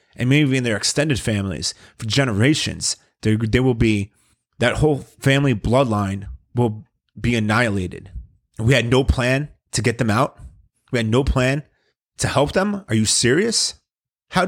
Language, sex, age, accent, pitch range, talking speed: English, male, 30-49, American, 100-125 Hz, 160 wpm